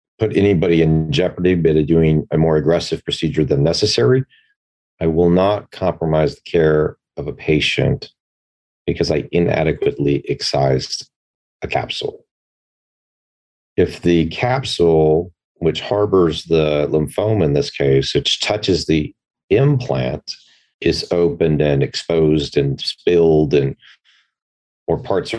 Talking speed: 120 wpm